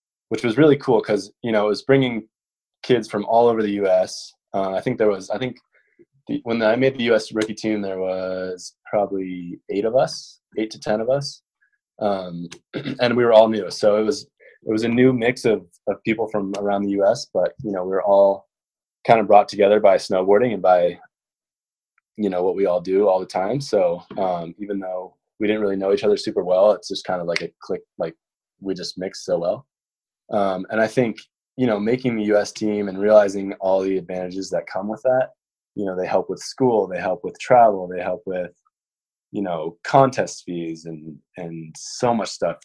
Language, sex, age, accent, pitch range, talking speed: English, male, 20-39, American, 90-110 Hz, 215 wpm